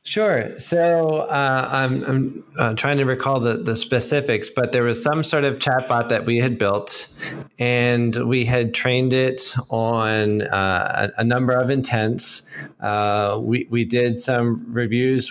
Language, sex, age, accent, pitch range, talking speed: English, male, 20-39, American, 110-135 Hz, 160 wpm